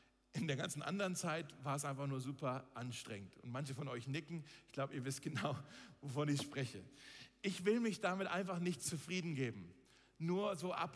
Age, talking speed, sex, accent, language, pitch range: 50-69, 190 wpm, male, German, German, 145-195 Hz